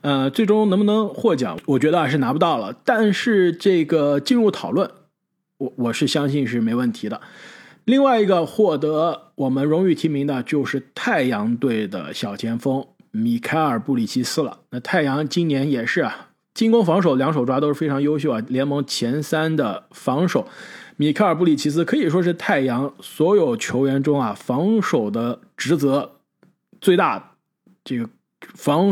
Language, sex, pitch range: Chinese, male, 135-180 Hz